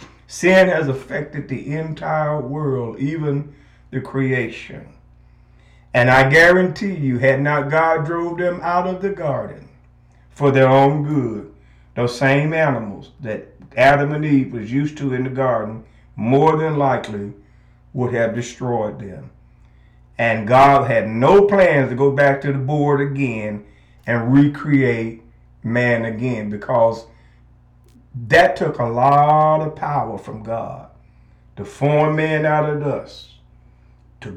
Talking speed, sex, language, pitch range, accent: 135 wpm, male, English, 115-150 Hz, American